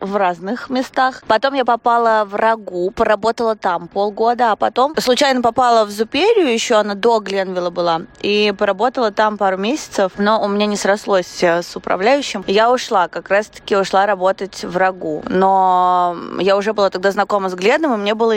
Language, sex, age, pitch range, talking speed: Russian, female, 20-39, 195-225 Hz, 175 wpm